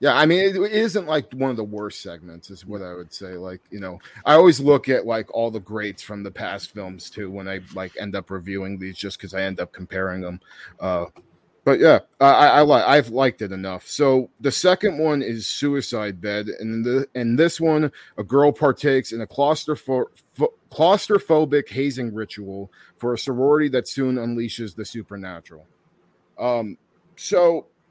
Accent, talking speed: American, 185 wpm